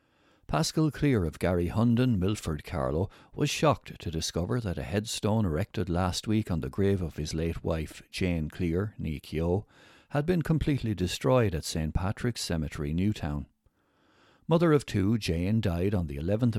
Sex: male